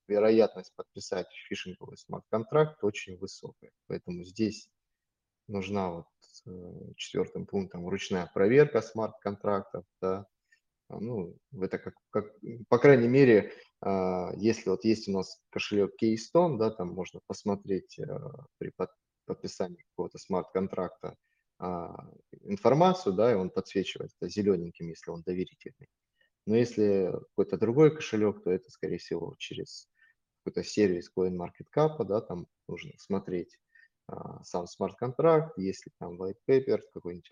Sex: male